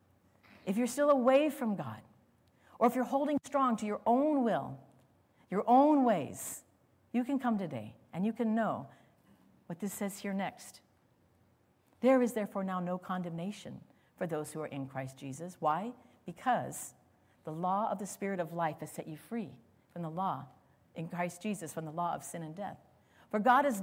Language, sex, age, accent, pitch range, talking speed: English, female, 50-69, American, 150-230 Hz, 185 wpm